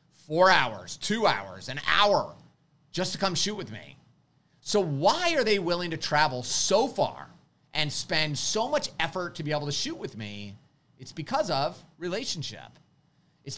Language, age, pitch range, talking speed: English, 30-49, 140-180 Hz, 170 wpm